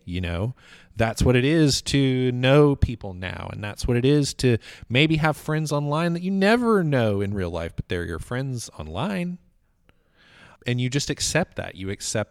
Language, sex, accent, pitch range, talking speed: English, male, American, 90-125 Hz, 190 wpm